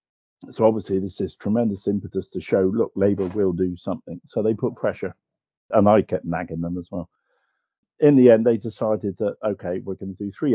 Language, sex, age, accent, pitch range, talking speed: English, male, 50-69, British, 95-115 Hz, 205 wpm